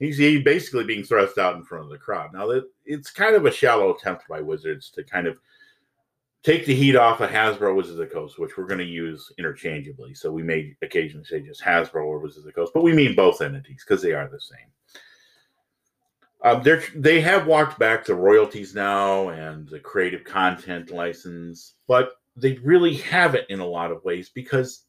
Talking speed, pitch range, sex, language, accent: 200 wpm, 95-150 Hz, male, English, American